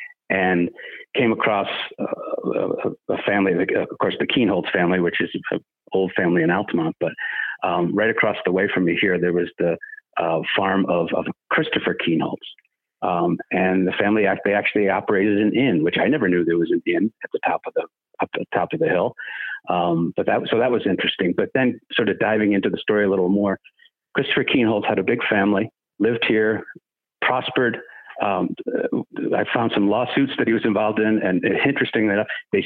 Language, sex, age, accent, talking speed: English, male, 50-69, American, 195 wpm